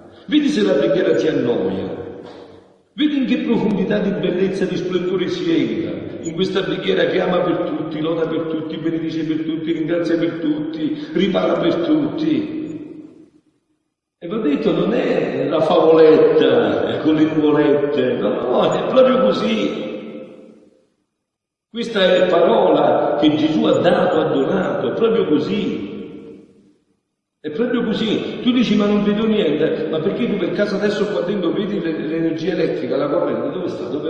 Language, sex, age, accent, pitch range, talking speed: Italian, male, 50-69, native, 165-270 Hz, 155 wpm